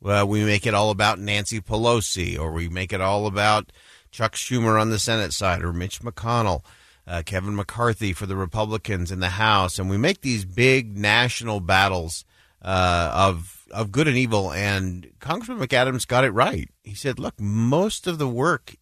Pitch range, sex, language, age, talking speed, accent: 95-125 Hz, male, English, 40-59, 185 wpm, American